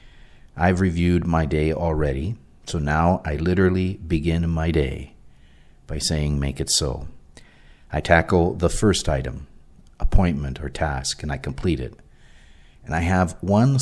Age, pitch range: 50-69, 70-90 Hz